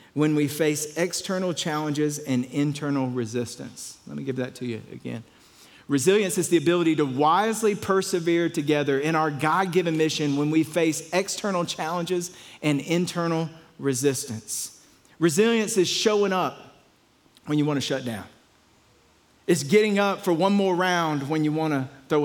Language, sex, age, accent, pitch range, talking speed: English, male, 40-59, American, 150-185 Hz, 150 wpm